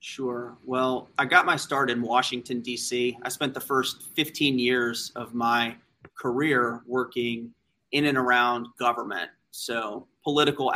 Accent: American